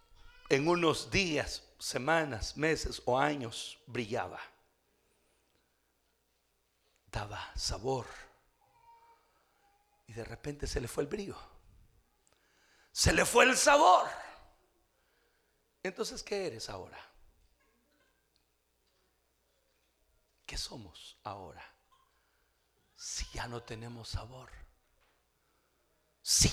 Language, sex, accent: Spanish, male, Mexican